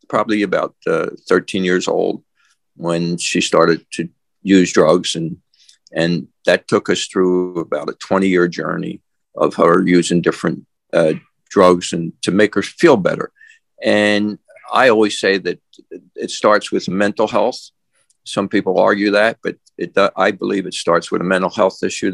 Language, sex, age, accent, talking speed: English, male, 50-69, American, 165 wpm